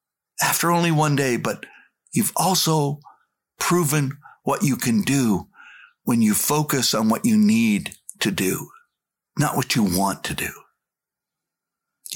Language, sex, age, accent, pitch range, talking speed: English, male, 60-79, American, 150-205 Hz, 140 wpm